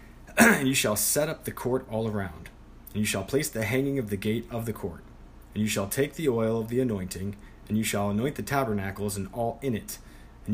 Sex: male